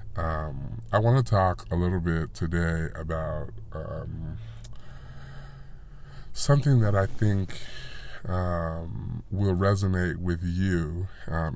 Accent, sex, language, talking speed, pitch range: American, male, English, 110 wpm, 80-95 Hz